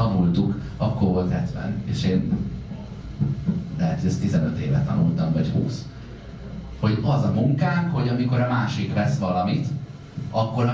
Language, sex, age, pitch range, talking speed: Hungarian, male, 30-49, 110-135 Hz, 135 wpm